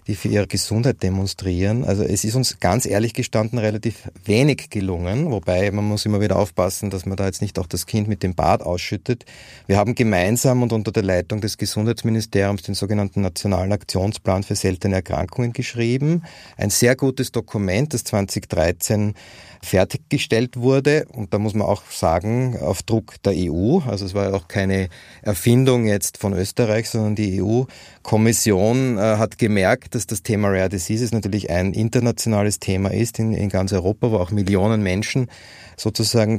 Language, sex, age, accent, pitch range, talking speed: German, male, 30-49, Austrian, 95-115 Hz, 170 wpm